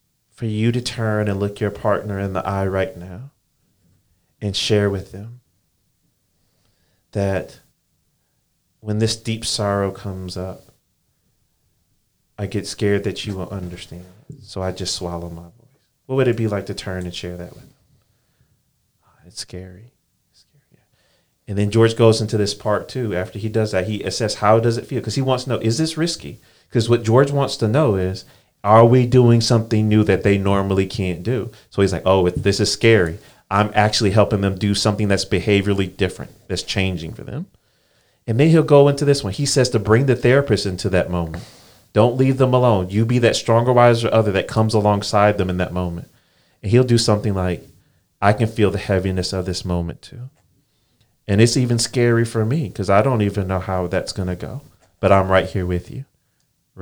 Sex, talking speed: male, 195 wpm